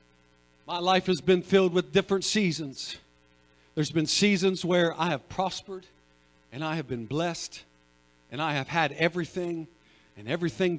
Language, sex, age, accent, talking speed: English, male, 50-69, American, 150 wpm